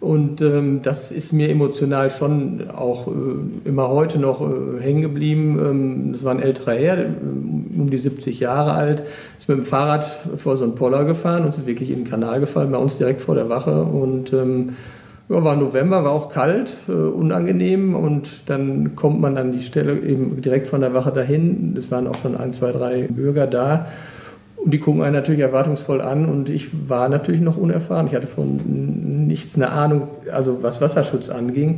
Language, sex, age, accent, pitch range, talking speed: German, male, 50-69, German, 125-150 Hz, 195 wpm